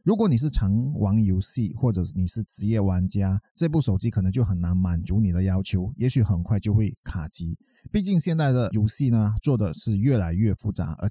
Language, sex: Chinese, male